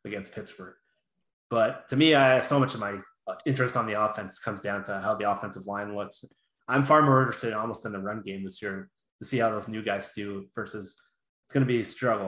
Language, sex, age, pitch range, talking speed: English, male, 20-39, 100-125 Hz, 225 wpm